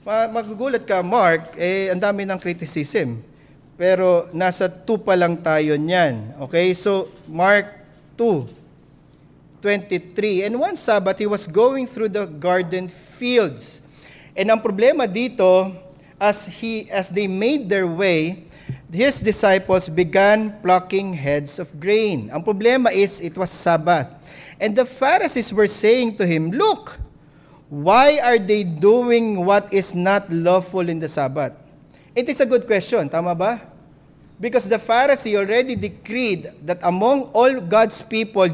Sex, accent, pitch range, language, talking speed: male, Filipino, 160-220 Hz, English, 140 wpm